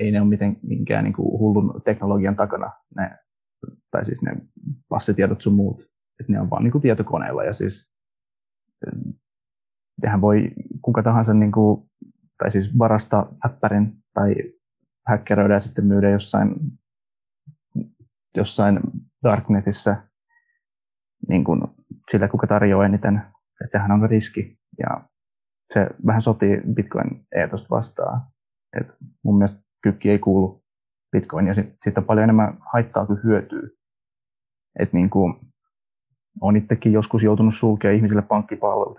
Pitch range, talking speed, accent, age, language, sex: 100-110 Hz, 120 wpm, native, 20-39, Finnish, male